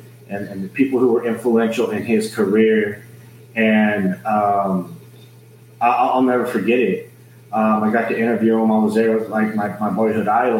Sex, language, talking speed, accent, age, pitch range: male, English, 170 wpm, American, 30-49, 100-115 Hz